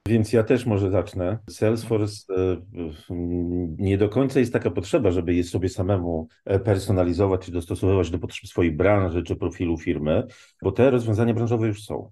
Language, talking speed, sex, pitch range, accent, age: Polish, 160 wpm, male, 85-110 Hz, native, 40-59